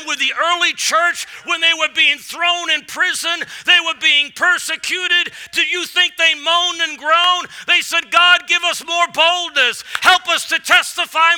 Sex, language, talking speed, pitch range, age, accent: male, English, 170 wpm, 255-345 Hz, 50-69, American